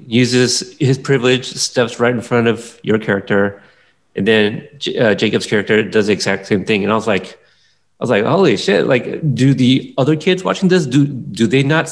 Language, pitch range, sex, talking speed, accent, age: English, 110-140 Hz, male, 200 wpm, American, 30-49